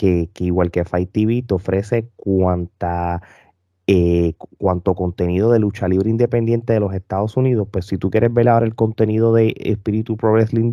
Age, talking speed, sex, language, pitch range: 20-39, 175 wpm, male, Spanish, 95-120 Hz